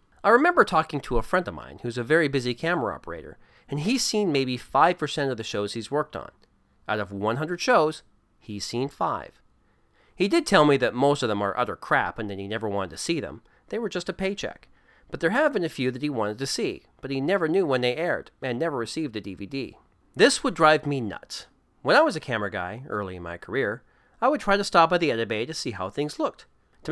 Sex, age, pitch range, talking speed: male, 40-59, 115-160 Hz, 245 wpm